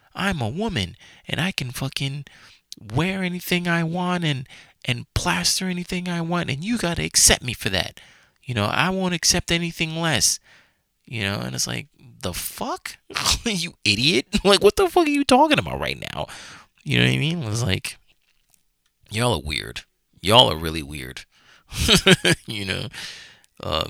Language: English